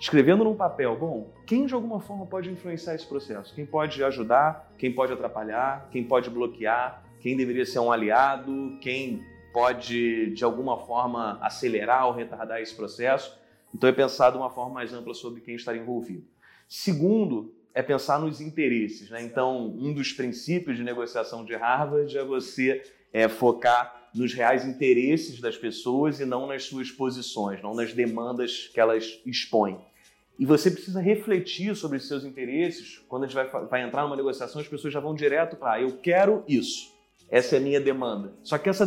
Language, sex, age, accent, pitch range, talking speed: Portuguese, male, 30-49, Brazilian, 120-170 Hz, 180 wpm